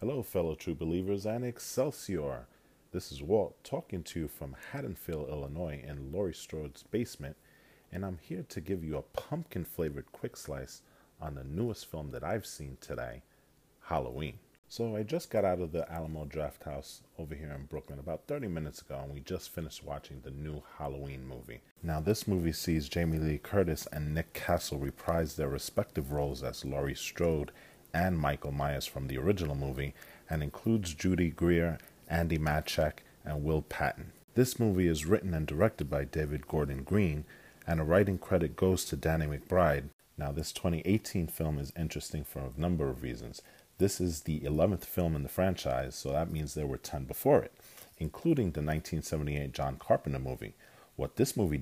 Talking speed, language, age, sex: 175 wpm, English, 40-59, male